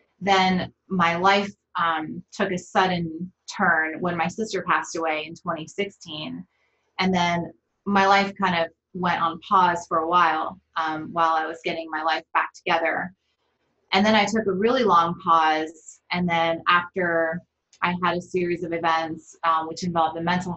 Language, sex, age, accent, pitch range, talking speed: English, female, 20-39, American, 160-180 Hz, 170 wpm